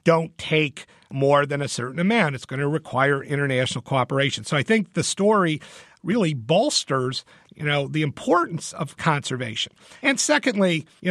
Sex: male